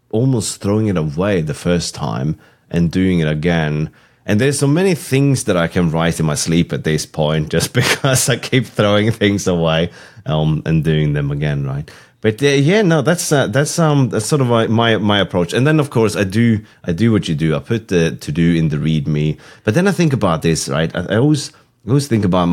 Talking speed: 230 wpm